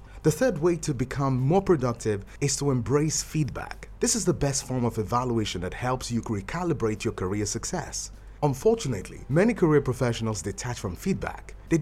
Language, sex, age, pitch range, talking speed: English, male, 30-49, 110-160 Hz, 170 wpm